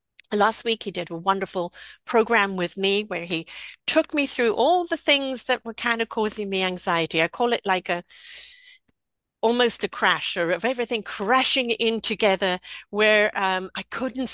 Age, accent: 50-69, British